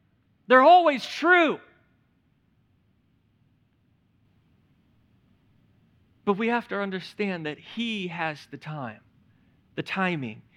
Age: 40-59